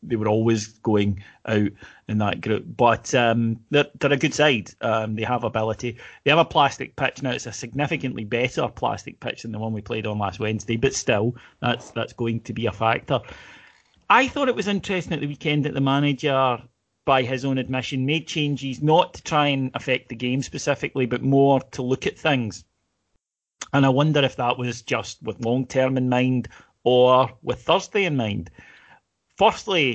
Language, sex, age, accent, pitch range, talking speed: English, male, 30-49, British, 115-145 Hz, 190 wpm